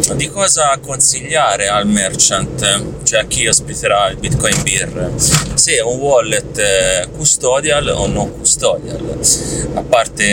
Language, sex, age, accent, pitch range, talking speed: Italian, male, 20-39, native, 105-155 Hz, 120 wpm